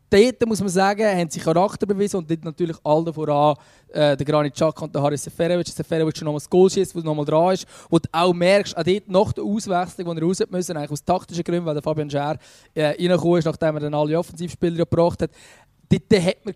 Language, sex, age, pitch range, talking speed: German, male, 20-39, 155-190 Hz, 230 wpm